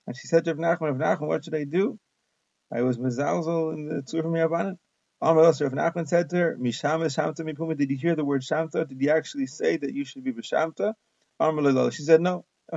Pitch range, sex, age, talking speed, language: 140-170 Hz, male, 30-49, 220 wpm, English